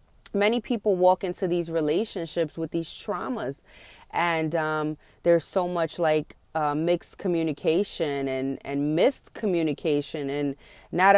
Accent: American